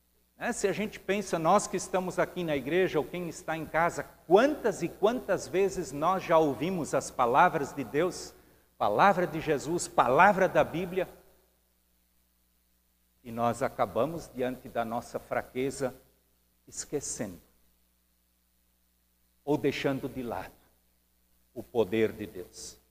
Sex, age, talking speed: male, 60-79, 125 wpm